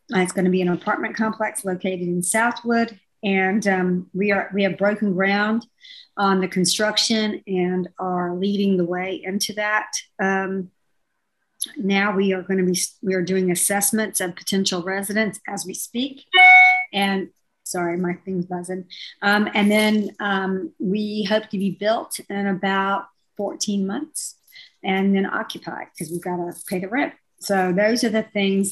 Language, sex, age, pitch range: English, male, 50-69, 180-205 Hz